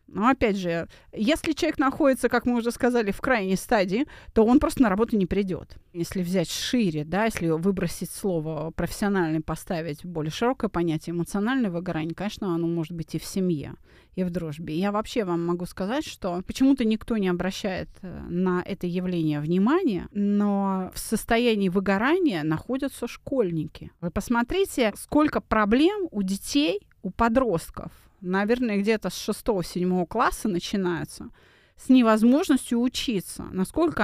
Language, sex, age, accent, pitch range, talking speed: Russian, female, 30-49, native, 180-260 Hz, 145 wpm